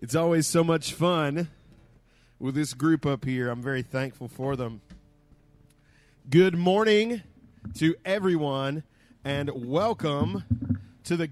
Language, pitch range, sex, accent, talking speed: English, 135-175 Hz, male, American, 120 wpm